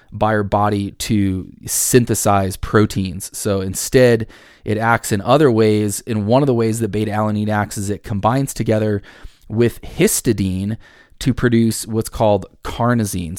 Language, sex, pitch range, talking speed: English, male, 100-120 Hz, 150 wpm